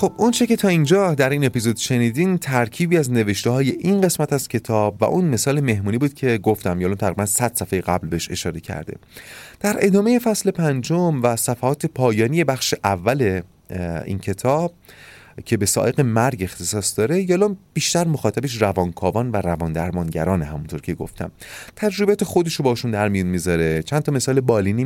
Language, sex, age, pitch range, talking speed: Persian, male, 30-49, 100-150 Hz, 165 wpm